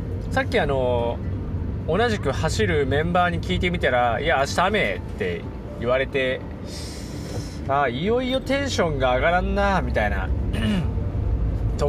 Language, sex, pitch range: Japanese, male, 90-140 Hz